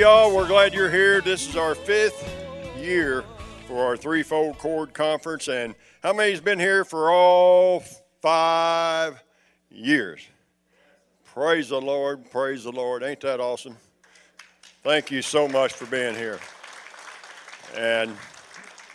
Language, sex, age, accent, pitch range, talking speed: English, male, 60-79, American, 125-180 Hz, 135 wpm